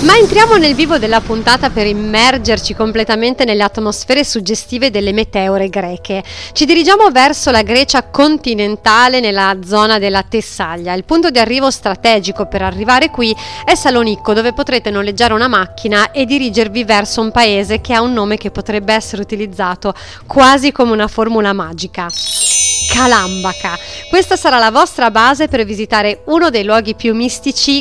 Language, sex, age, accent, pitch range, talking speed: Italian, female, 30-49, native, 210-255 Hz, 155 wpm